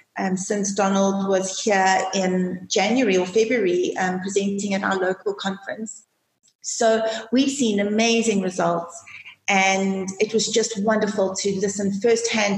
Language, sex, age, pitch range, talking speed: English, female, 30-49, 190-225 Hz, 135 wpm